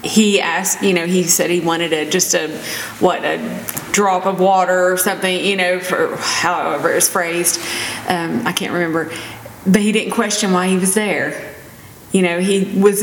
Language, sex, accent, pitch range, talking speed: English, female, American, 175-200 Hz, 185 wpm